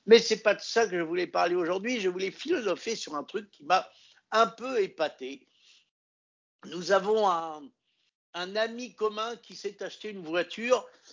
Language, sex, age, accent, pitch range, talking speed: French, male, 60-79, French, 165-235 Hz, 180 wpm